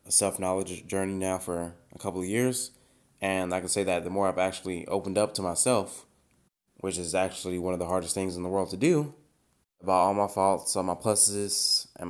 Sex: male